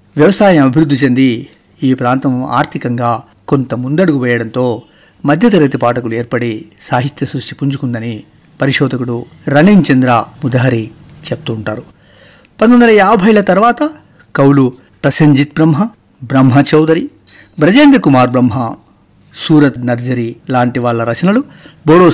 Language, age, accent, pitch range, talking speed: Telugu, 50-69, native, 120-160 Hz, 105 wpm